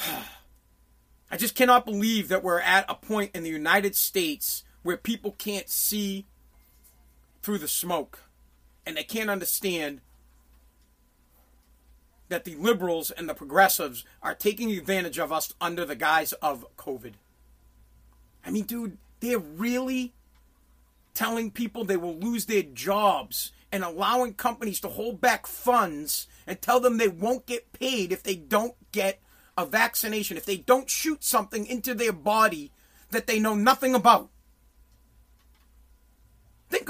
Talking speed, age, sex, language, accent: 140 wpm, 30-49, male, English, American